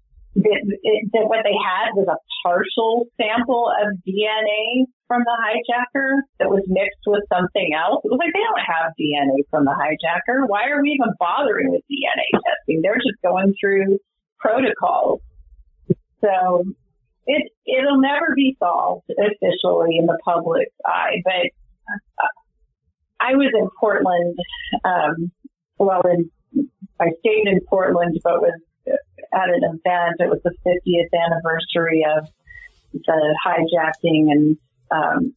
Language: English